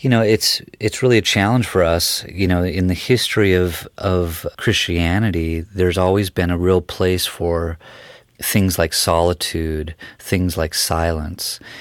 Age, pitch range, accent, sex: 30-49, 80-95 Hz, American, male